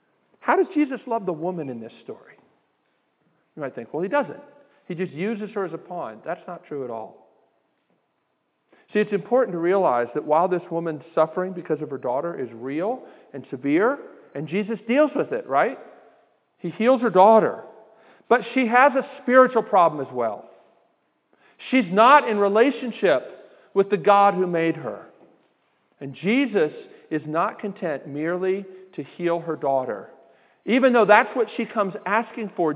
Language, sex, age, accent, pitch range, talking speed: English, male, 50-69, American, 165-235 Hz, 165 wpm